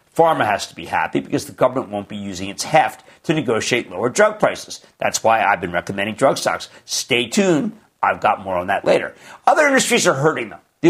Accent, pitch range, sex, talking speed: American, 115-185 Hz, male, 215 wpm